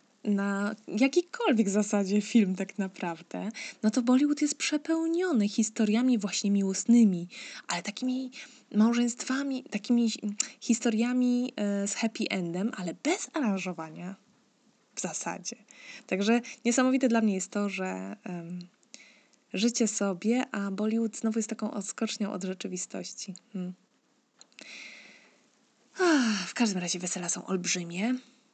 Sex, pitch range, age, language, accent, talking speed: female, 185-240 Hz, 20-39, Polish, native, 105 wpm